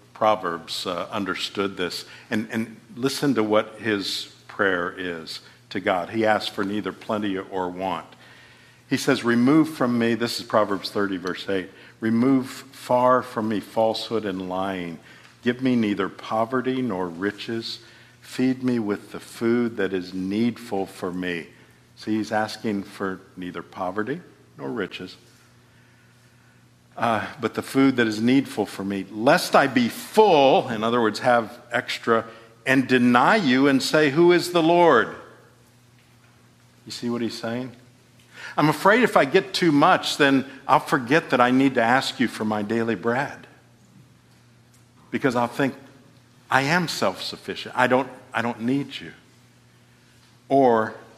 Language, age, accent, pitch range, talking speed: English, 50-69, American, 105-130 Hz, 150 wpm